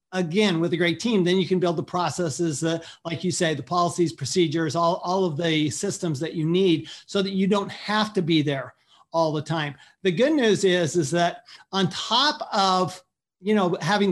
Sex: male